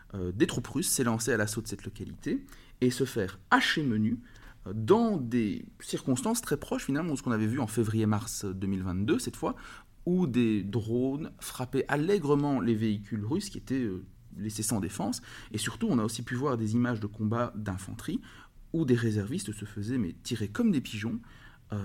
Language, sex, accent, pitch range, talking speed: French, male, French, 105-135 Hz, 190 wpm